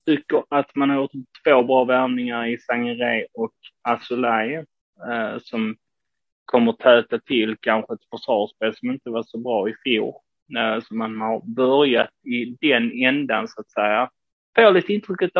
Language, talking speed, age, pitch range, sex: Swedish, 165 wpm, 20-39, 120-150 Hz, male